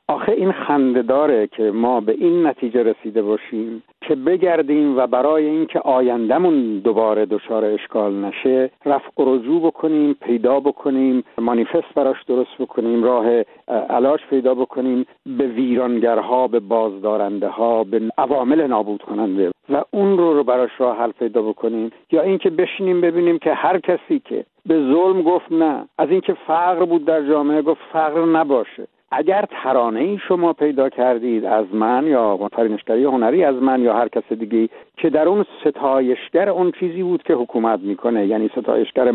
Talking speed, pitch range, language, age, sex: 155 wpm, 120-165 Hz, English, 60-79, male